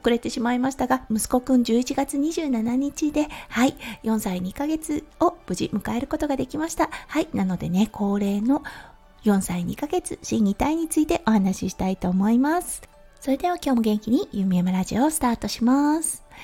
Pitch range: 205-295 Hz